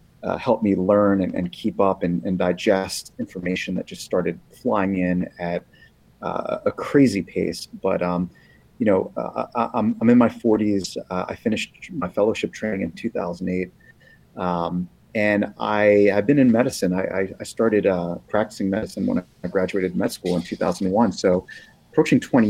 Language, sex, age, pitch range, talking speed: English, male, 30-49, 95-115 Hz, 175 wpm